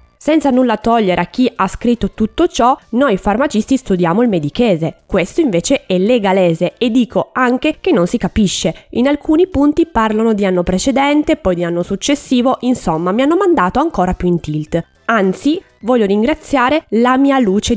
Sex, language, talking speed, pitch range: female, Italian, 170 wpm, 190-280 Hz